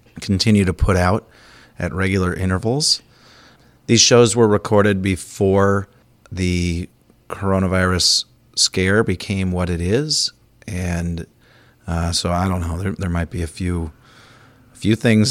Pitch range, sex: 90-110 Hz, male